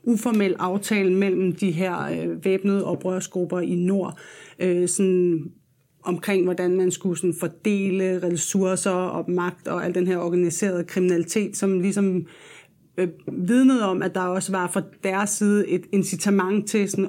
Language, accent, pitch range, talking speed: Danish, native, 180-200 Hz, 145 wpm